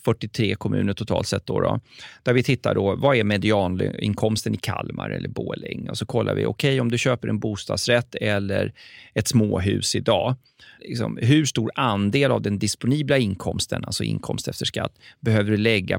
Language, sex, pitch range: Swedish, male, 105-135 Hz